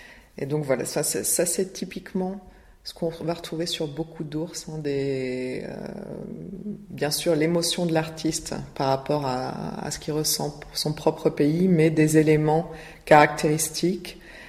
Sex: female